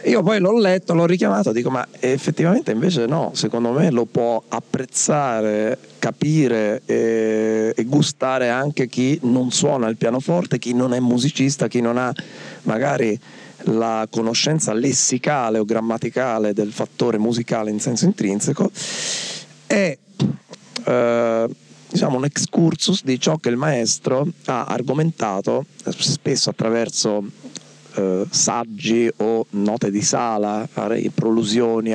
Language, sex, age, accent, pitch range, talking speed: Italian, male, 40-59, native, 110-135 Hz, 125 wpm